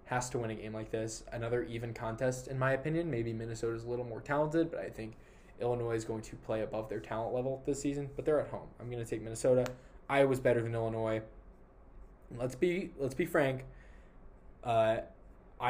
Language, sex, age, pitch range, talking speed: English, male, 20-39, 110-130 Hz, 195 wpm